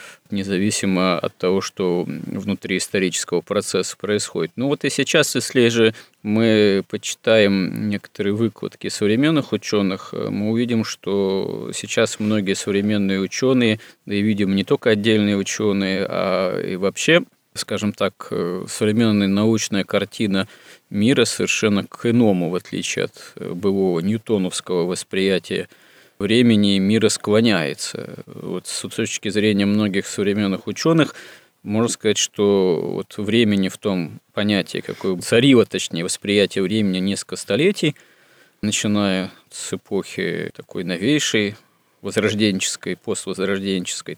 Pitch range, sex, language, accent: 100-110 Hz, male, Russian, native